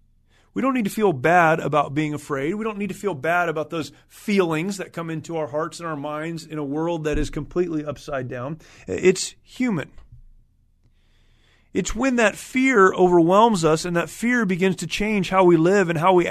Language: English